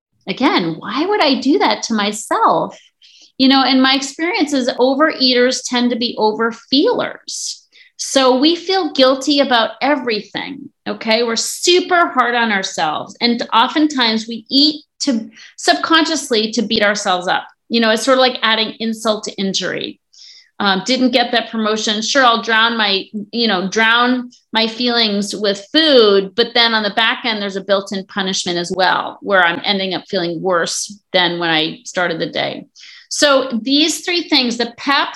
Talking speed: 165 wpm